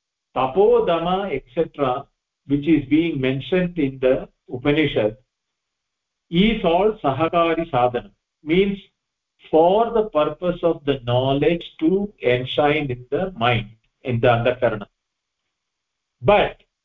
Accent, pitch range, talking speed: Indian, 130-170 Hz, 105 wpm